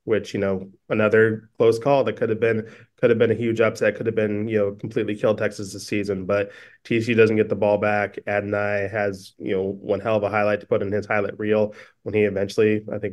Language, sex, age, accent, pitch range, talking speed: English, male, 20-39, American, 100-110 Hz, 240 wpm